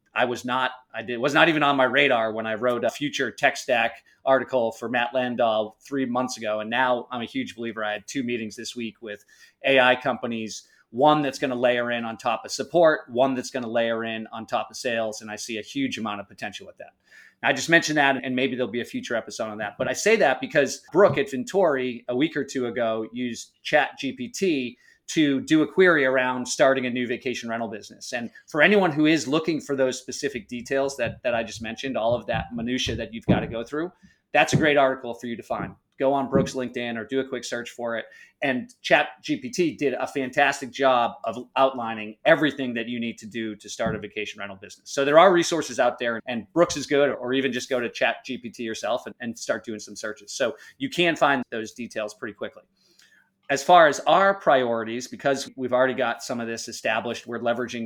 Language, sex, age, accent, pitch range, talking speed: English, male, 30-49, American, 115-140 Hz, 230 wpm